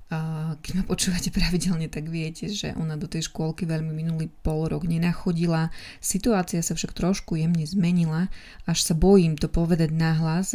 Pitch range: 160-180 Hz